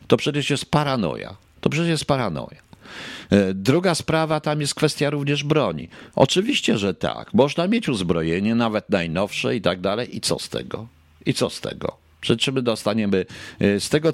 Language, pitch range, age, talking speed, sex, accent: Polish, 100-135 Hz, 50-69, 165 wpm, male, native